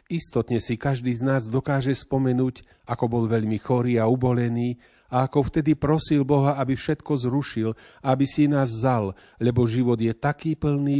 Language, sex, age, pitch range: Slovak, male, 40-59, 110-135 Hz